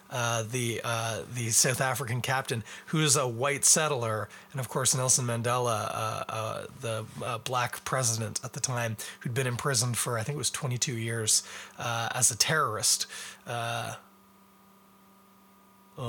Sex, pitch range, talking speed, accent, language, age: male, 115-145 Hz, 155 wpm, American, English, 30-49